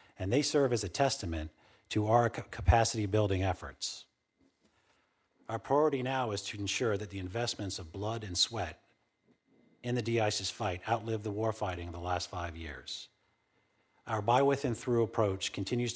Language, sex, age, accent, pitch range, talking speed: English, male, 40-59, American, 90-115 Hz, 145 wpm